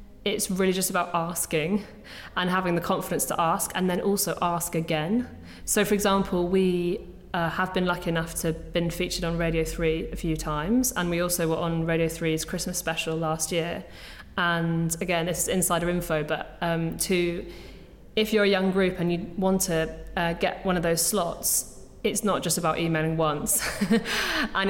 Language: English